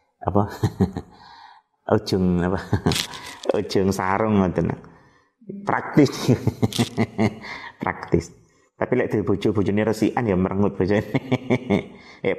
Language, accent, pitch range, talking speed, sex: Indonesian, native, 95-125 Hz, 95 wpm, male